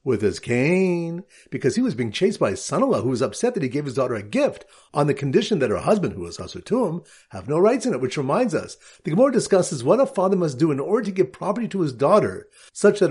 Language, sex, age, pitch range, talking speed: English, male, 50-69, 145-210 Hz, 255 wpm